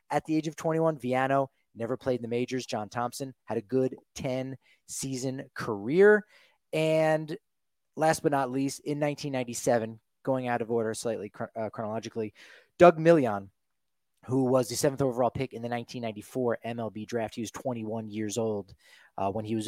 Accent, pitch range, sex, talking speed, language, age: American, 115-145 Hz, male, 170 wpm, English, 30-49